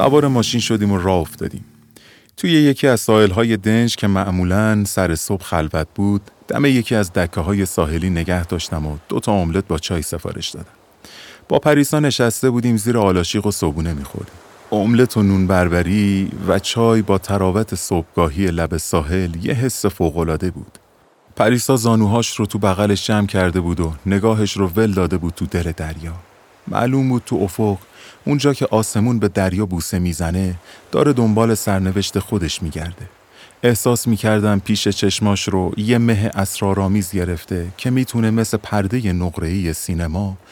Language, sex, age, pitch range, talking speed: Persian, male, 30-49, 90-115 Hz, 150 wpm